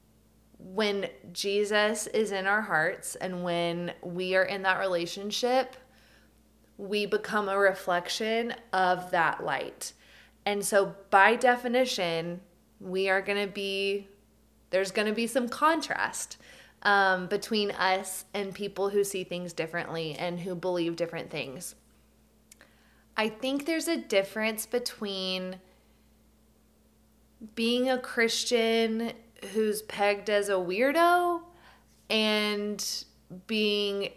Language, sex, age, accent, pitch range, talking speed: English, female, 20-39, American, 195-265 Hz, 115 wpm